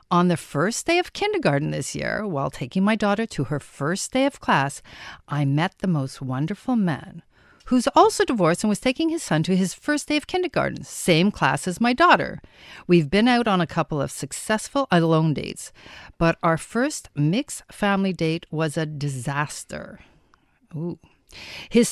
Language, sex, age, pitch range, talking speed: English, female, 50-69, 155-220 Hz, 175 wpm